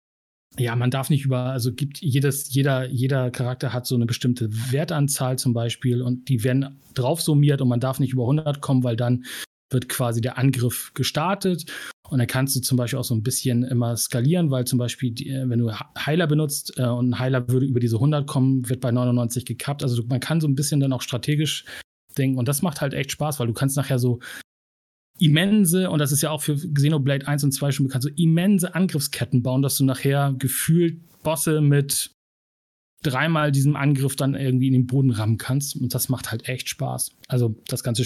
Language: German